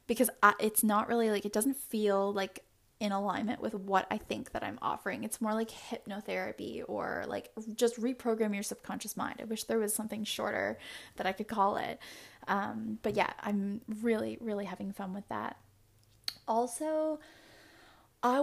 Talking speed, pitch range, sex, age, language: 175 wpm, 200-230 Hz, female, 10-29, English